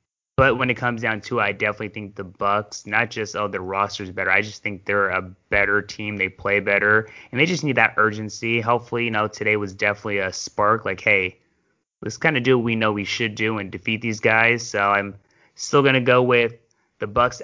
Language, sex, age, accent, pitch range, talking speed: English, male, 20-39, American, 105-120 Hz, 225 wpm